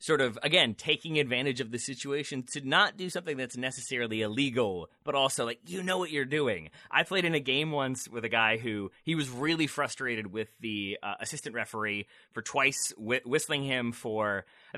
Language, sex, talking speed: English, male, 195 wpm